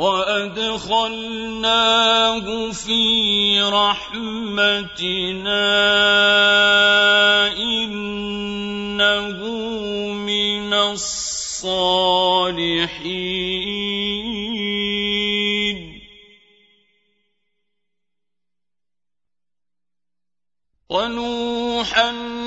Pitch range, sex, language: 200-225 Hz, male, Arabic